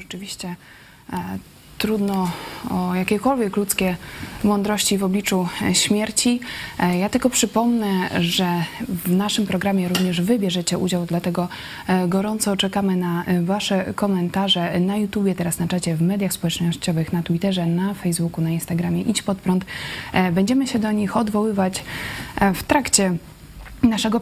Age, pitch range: 20-39, 185-215 Hz